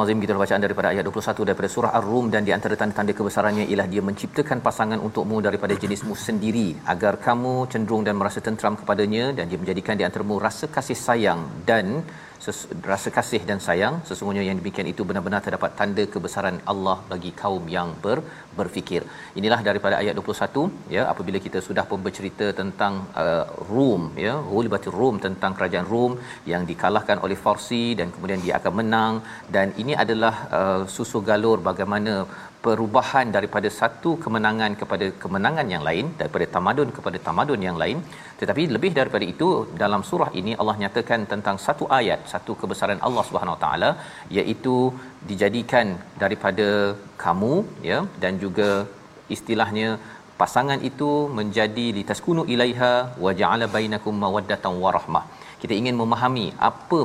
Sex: male